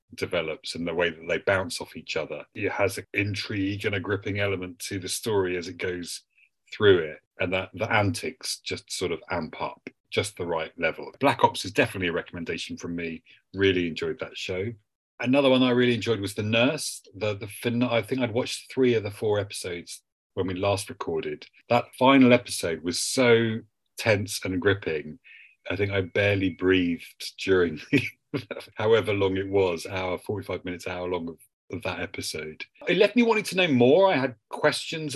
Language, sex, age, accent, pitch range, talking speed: English, male, 40-59, British, 90-120 Hz, 190 wpm